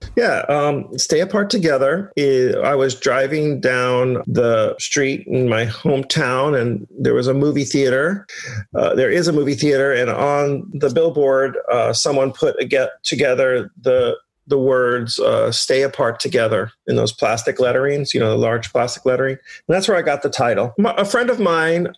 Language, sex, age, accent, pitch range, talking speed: English, male, 40-59, American, 130-160 Hz, 170 wpm